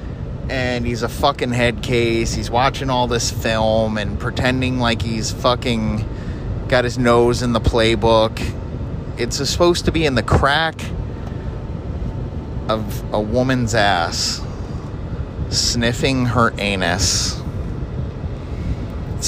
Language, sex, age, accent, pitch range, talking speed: English, male, 30-49, American, 100-120 Hz, 115 wpm